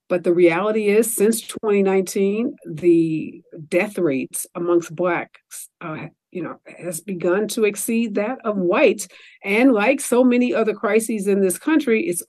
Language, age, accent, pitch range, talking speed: English, 50-69, American, 180-225 Hz, 150 wpm